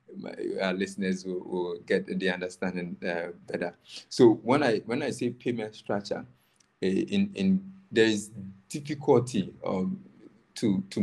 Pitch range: 90-110 Hz